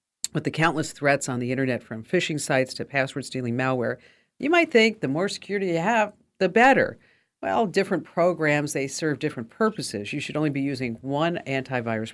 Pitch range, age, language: 125-170 Hz, 50-69, English